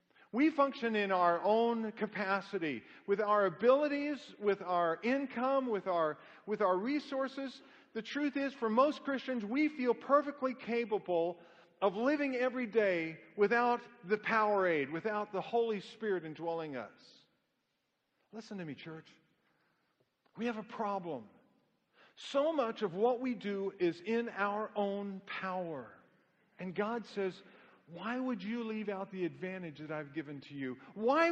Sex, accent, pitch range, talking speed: male, American, 200-270 Hz, 145 wpm